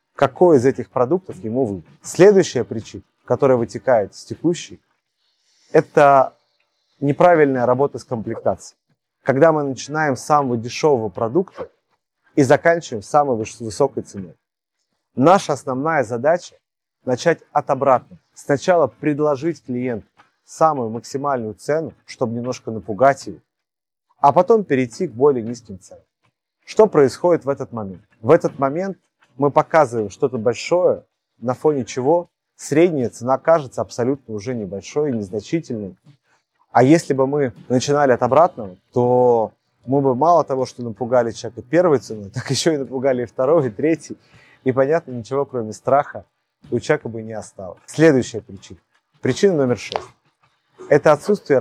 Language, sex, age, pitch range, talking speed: Russian, male, 30-49, 120-155 Hz, 135 wpm